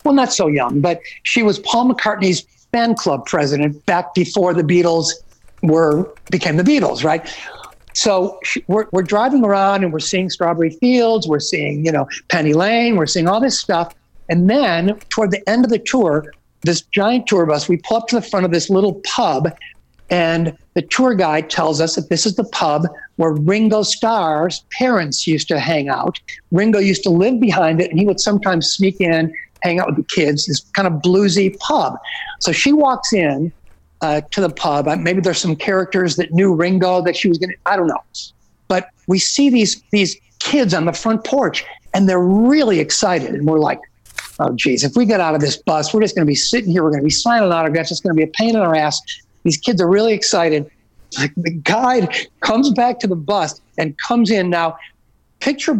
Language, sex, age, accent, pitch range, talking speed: English, male, 60-79, American, 160-215 Hz, 210 wpm